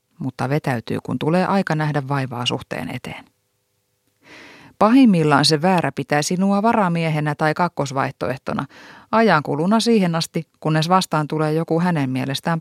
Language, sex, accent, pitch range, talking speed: Finnish, female, native, 135-180 Hz, 130 wpm